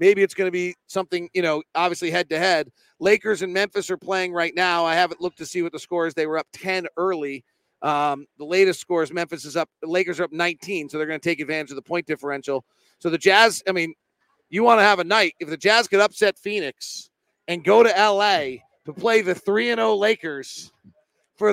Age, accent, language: 40-59, American, English